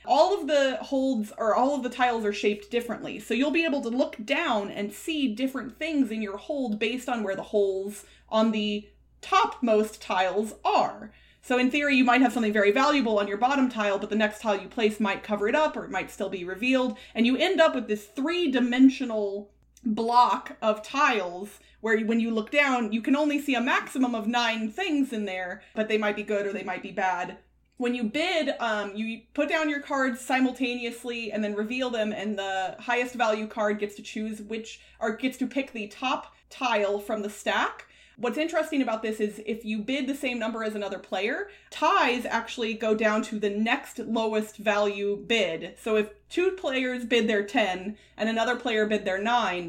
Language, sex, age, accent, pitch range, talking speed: English, female, 30-49, American, 210-260 Hz, 210 wpm